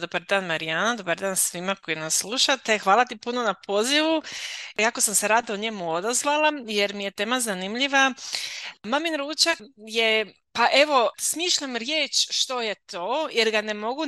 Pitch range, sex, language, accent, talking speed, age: 195-250 Hz, female, Croatian, native, 170 wpm, 30-49